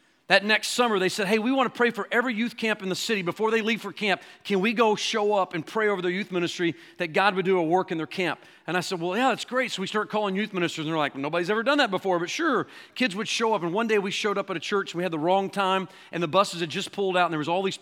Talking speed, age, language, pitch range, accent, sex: 325 wpm, 40-59, English, 160-210 Hz, American, male